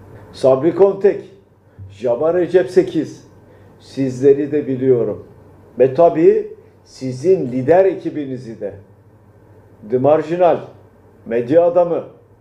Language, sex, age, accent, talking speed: Turkish, male, 50-69, native, 85 wpm